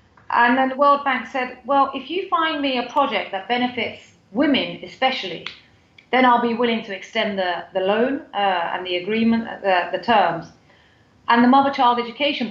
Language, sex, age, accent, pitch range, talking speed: English, female, 30-49, British, 190-240 Hz, 180 wpm